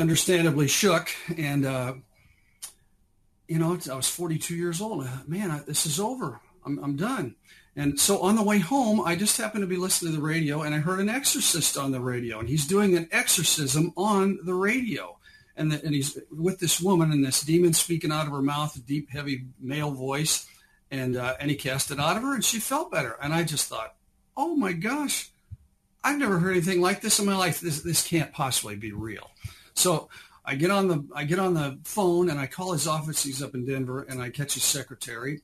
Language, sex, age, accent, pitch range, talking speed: English, male, 50-69, American, 130-180 Hz, 215 wpm